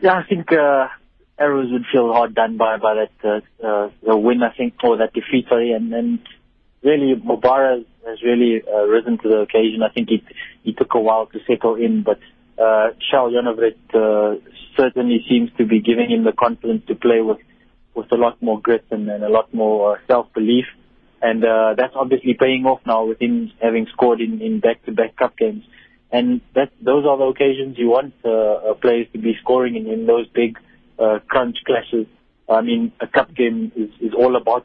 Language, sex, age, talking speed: English, male, 20-39, 200 wpm